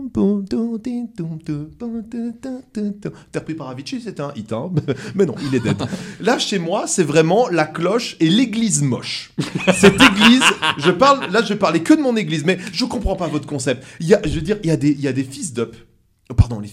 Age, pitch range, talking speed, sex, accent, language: 30-49, 155-245 Hz, 205 wpm, male, French, French